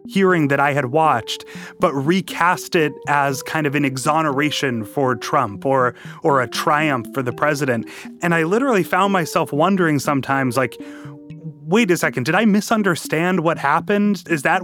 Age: 30-49